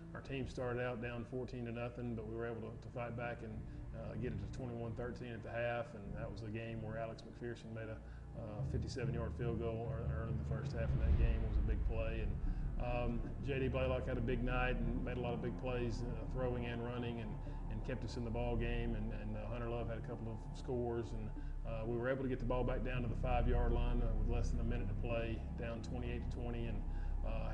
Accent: American